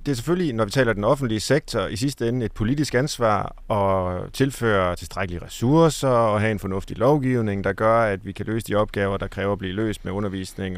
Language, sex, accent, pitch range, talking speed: Danish, male, native, 105-140 Hz, 215 wpm